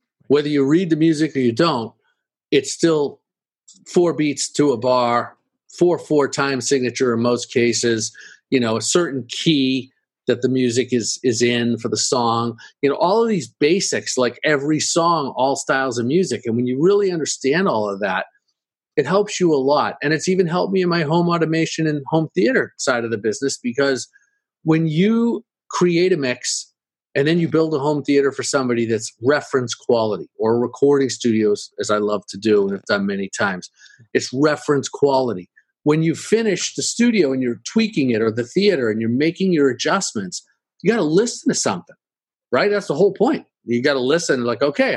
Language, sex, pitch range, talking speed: English, male, 120-170 Hz, 195 wpm